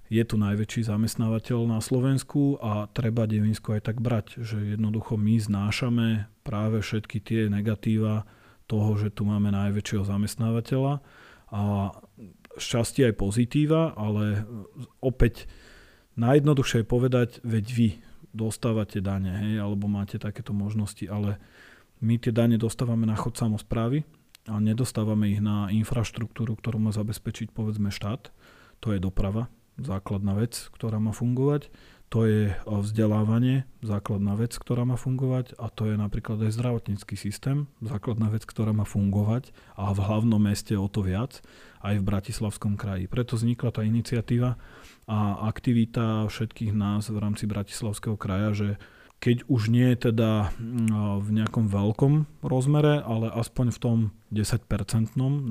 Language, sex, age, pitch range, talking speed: Slovak, male, 40-59, 105-120 Hz, 140 wpm